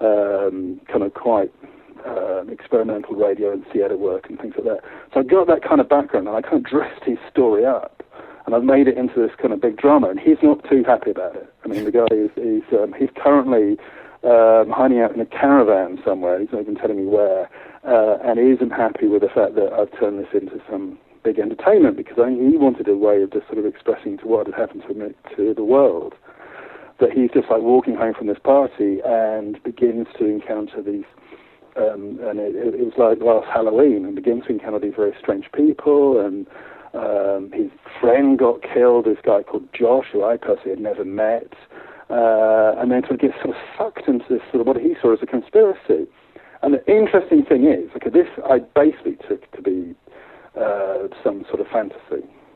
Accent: British